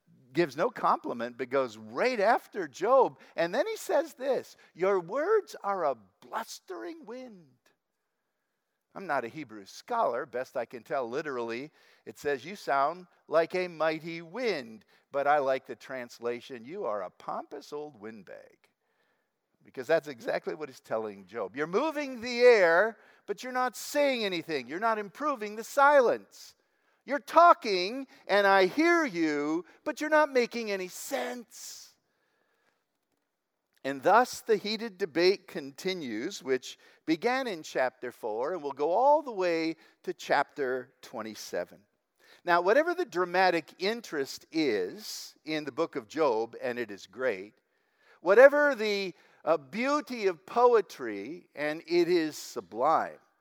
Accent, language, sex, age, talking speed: American, English, male, 50-69, 145 wpm